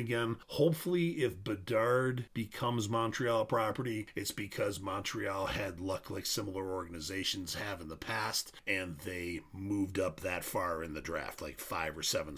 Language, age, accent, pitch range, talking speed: English, 40-59, American, 95-130 Hz, 155 wpm